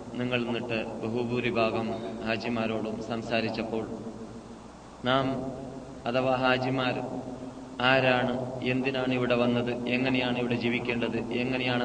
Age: 30-49